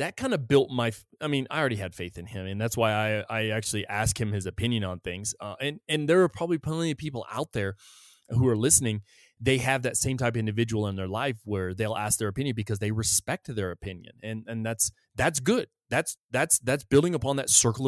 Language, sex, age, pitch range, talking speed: English, male, 20-39, 110-140 Hz, 240 wpm